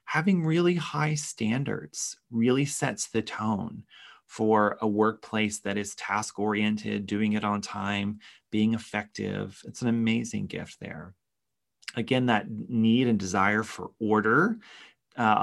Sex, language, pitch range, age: male, English, 105-130 Hz, 30-49